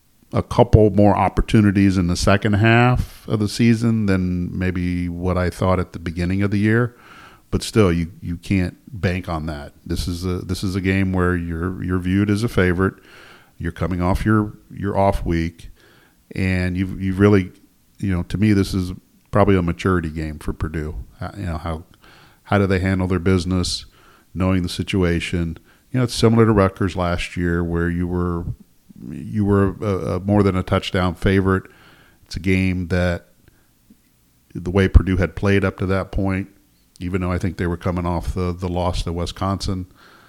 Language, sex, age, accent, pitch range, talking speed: English, male, 40-59, American, 85-100 Hz, 190 wpm